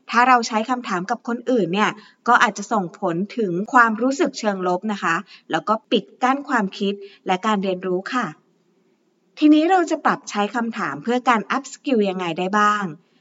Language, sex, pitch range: Thai, female, 195-260 Hz